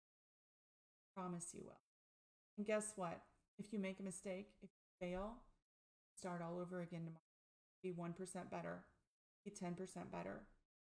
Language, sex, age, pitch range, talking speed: English, female, 30-49, 180-215 Hz, 145 wpm